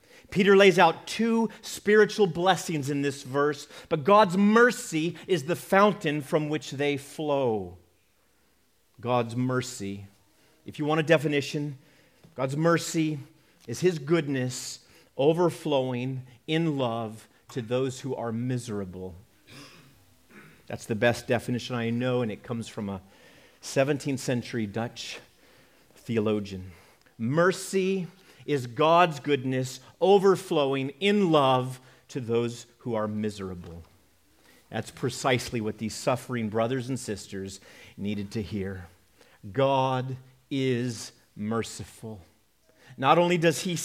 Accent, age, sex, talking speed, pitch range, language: American, 40-59, male, 115 wpm, 115-160 Hz, English